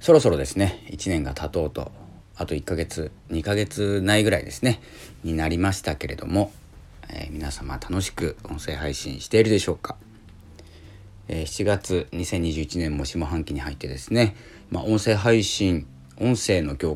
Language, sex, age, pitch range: Japanese, male, 40-59, 75-110 Hz